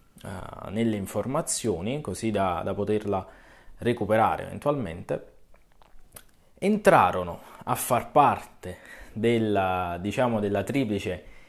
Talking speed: 85 wpm